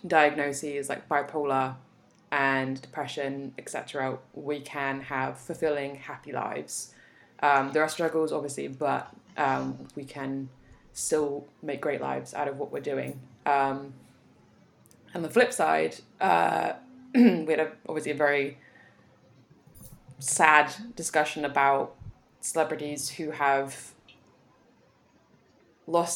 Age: 20-39